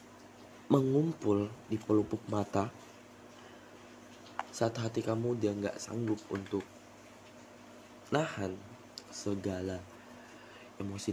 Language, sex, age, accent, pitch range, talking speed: Indonesian, male, 20-39, native, 100-120 Hz, 75 wpm